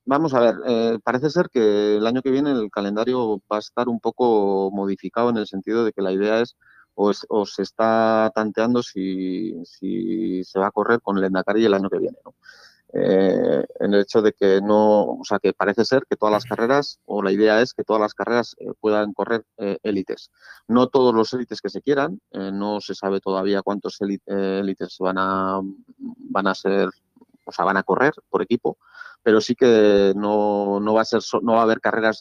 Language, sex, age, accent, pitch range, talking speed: Spanish, male, 30-49, Spanish, 100-115 Hz, 215 wpm